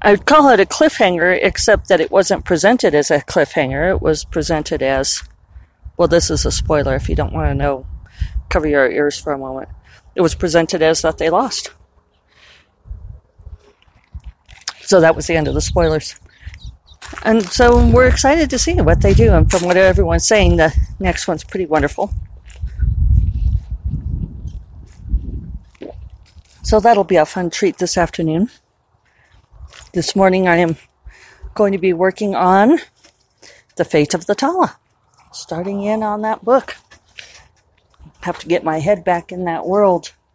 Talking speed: 155 wpm